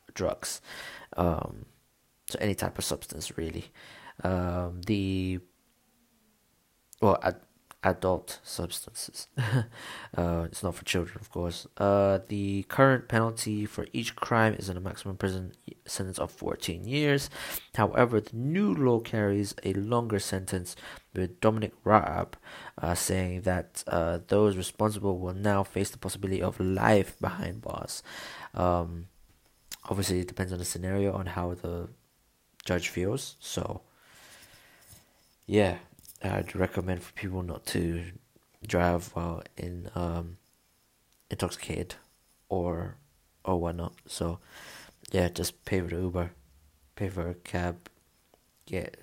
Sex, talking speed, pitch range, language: male, 125 wpm, 90-105 Hz, English